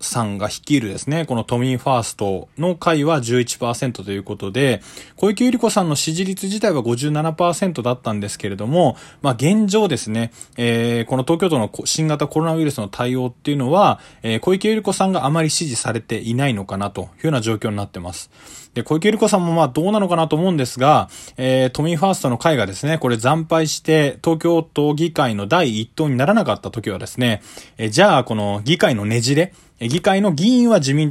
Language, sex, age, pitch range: Japanese, male, 20-39, 115-165 Hz